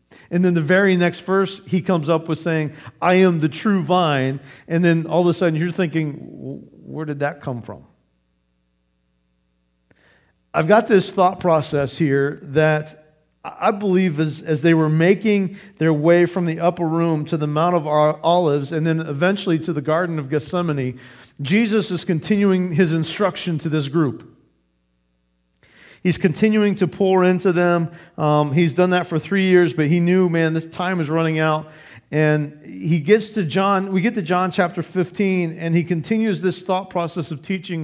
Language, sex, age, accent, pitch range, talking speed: English, male, 50-69, American, 130-180 Hz, 175 wpm